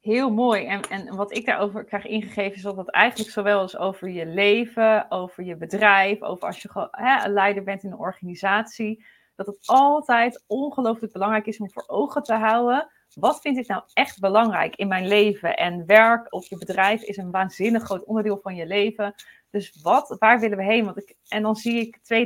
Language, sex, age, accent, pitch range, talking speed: Dutch, female, 30-49, Dutch, 195-225 Hz, 210 wpm